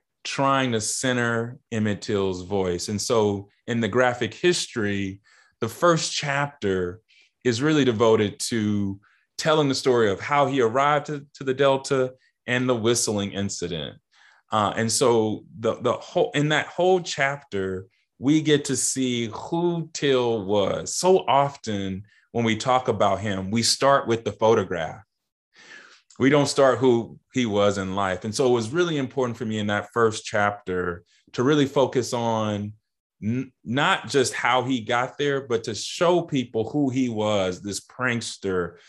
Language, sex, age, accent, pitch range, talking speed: English, male, 20-39, American, 105-135 Hz, 160 wpm